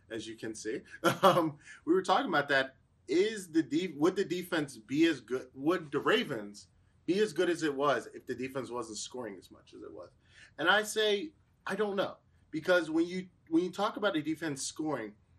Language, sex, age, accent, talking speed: English, male, 20-39, American, 210 wpm